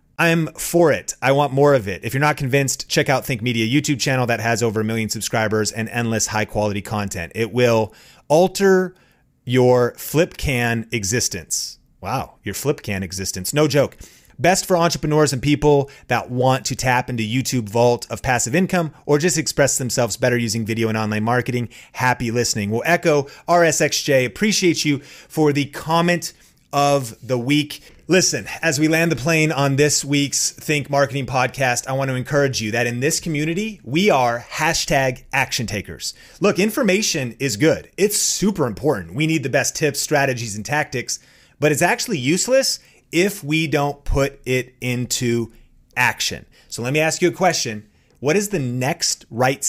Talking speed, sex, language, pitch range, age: 175 wpm, male, English, 120-155 Hz, 30-49